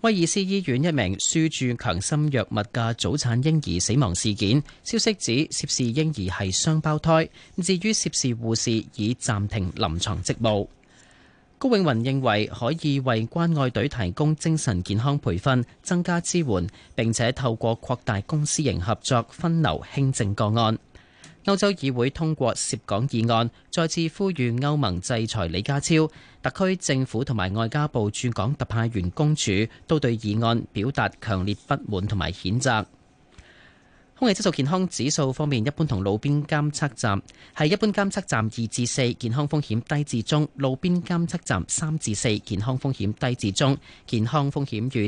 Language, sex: Chinese, male